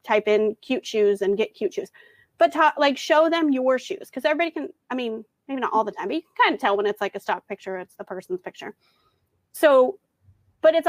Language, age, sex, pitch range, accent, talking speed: English, 30-49, female, 220-320 Hz, American, 240 wpm